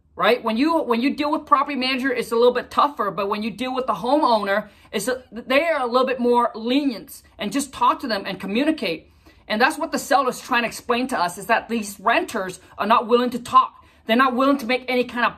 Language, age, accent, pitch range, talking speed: English, 40-59, American, 215-270 Hz, 255 wpm